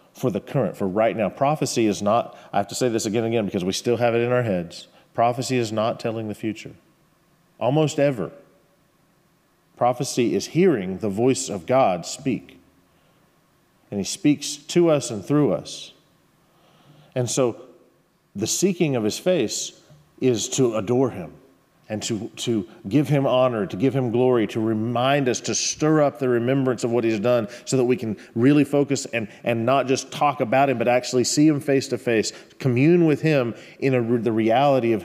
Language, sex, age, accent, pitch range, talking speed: English, male, 40-59, American, 120-150 Hz, 190 wpm